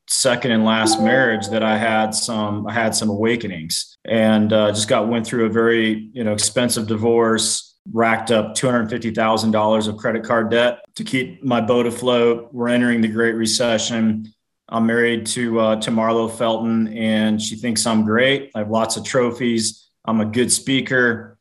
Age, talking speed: 30-49, 175 wpm